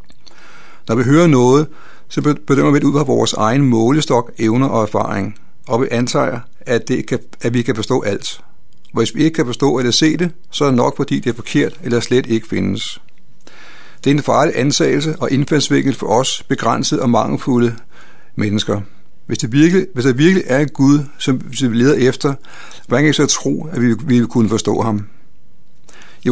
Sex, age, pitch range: male, 60-79, 115-145 Hz